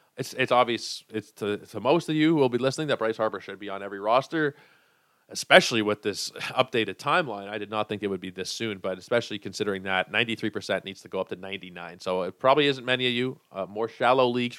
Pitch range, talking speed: 105-140 Hz, 235 wpm